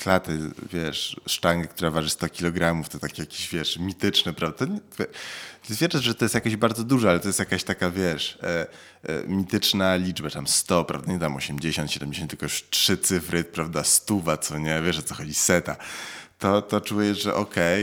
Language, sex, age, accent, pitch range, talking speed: Polish, male, 20-39, native, 85-105 Hz, 195 wpm